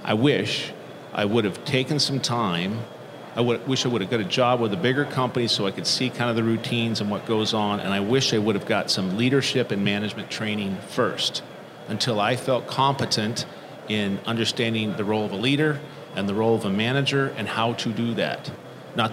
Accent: American